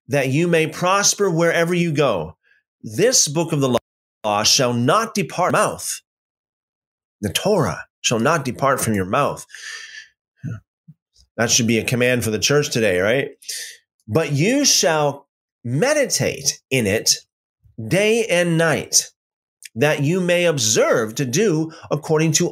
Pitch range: 120-170 Hz